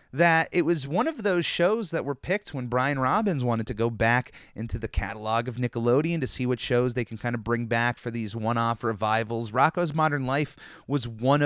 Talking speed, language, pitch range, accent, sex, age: 220 wpm, English, 120-150 Hz, American, male, 30-49